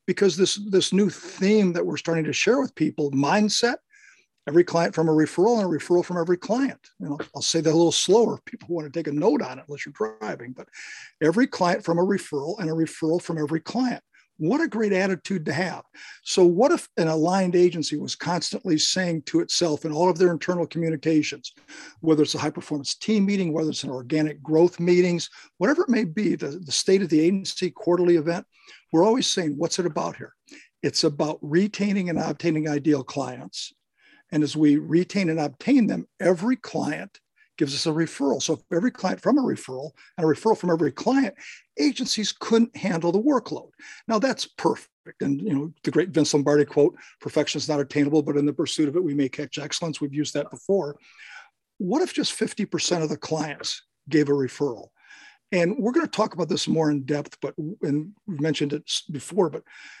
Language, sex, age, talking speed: English, male, 50-69, 205 wpm